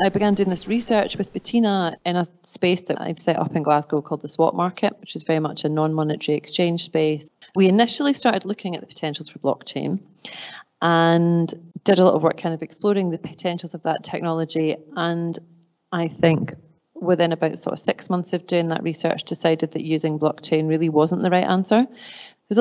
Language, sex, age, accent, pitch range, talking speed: English, female, 30-49, British, 160-190 Hz, 195 wpm